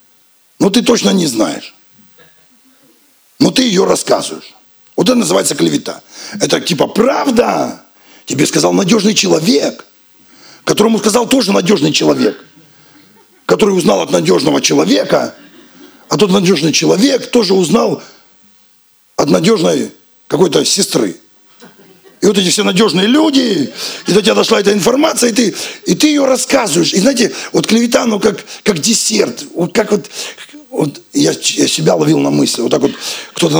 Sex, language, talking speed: male, Russian, 140 wpm